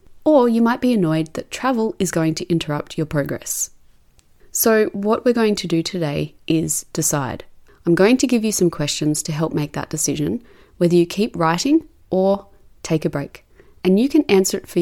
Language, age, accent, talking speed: English, 30-49, Australian, 195 wpm